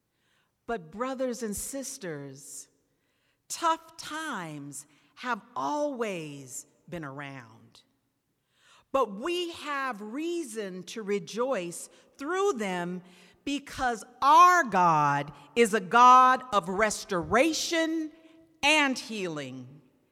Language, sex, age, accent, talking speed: English, female, 50-69, American, 85 wpm